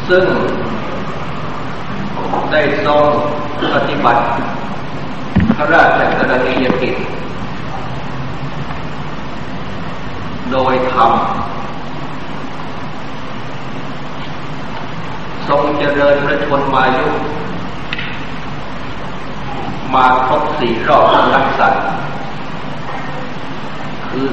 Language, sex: Thai, male